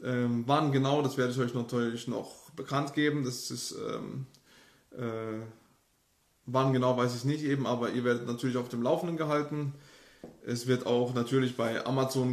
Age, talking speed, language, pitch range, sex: 20-39, 170 wpm, German, 125-140 Hz, male